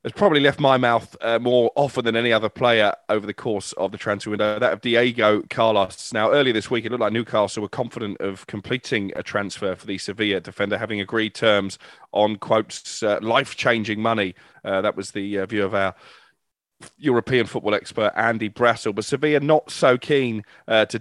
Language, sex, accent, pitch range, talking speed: English, male, British, 105-120 Hz, 195 wpm